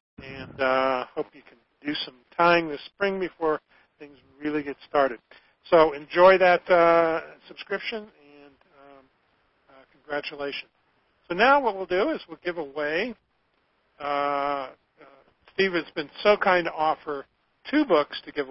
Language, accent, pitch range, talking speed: English, American, 130-170 Hz, 150 wpm